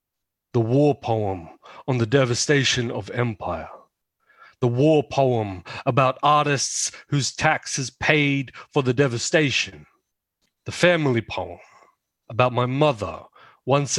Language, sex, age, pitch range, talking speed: English, male, 30-49, 125-155 Hz, 110 wpm